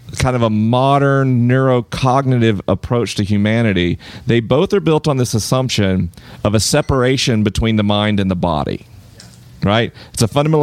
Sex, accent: male, American